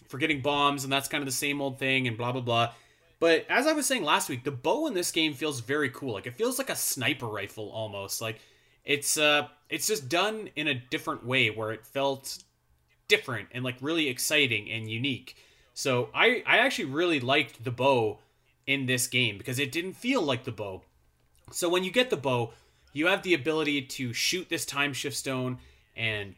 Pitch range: 120-150 Hz